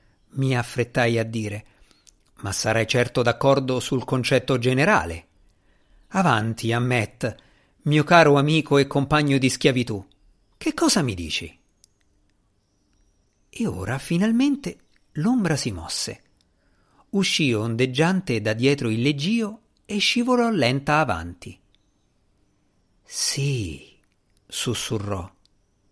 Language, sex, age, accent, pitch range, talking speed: Italian, male, 50-69, native, 100-145 Hz, 95 wpm